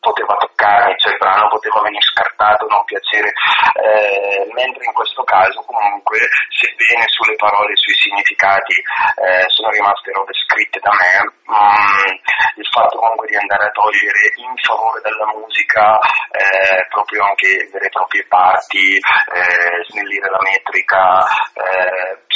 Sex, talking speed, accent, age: male, 140 wpm, native, 30-49